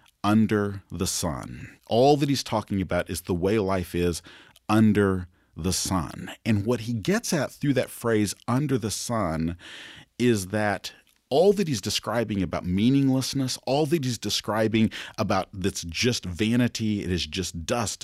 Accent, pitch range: American, 90-120 Hz